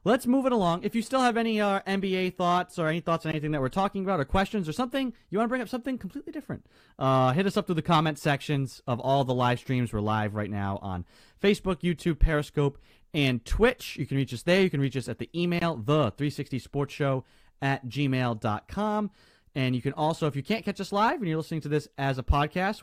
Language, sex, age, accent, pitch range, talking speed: English, male, 30-49, American, 115-180 Hz, 235 wpm